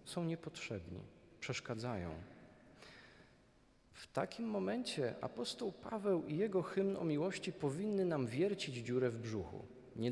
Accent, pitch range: native, 115-155 Hz